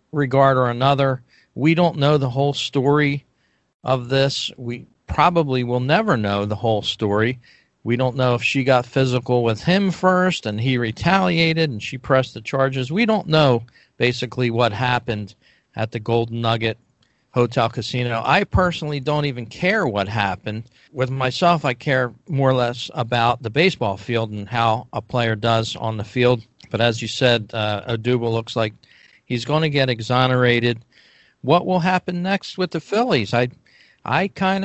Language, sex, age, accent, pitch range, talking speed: English, male, 40-59, American, 115-155 Hz, 170 wpm